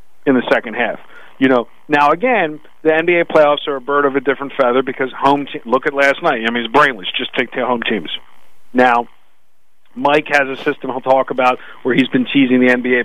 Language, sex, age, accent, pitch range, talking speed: English, male, 40-59, American, 130-165 Hz, 220 wpm